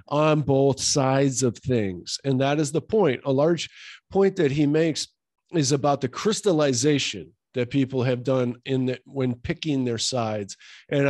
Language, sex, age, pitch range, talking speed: English, male, 50-69, 120-145 Hz, 170 wpm